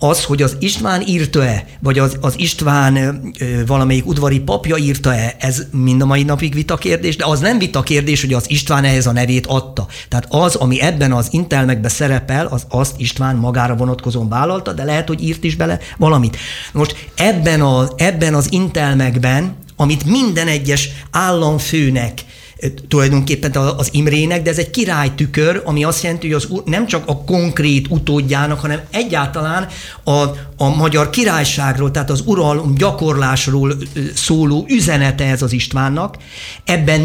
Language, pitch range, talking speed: Hungarian, 135-170 Hz, 155 wpm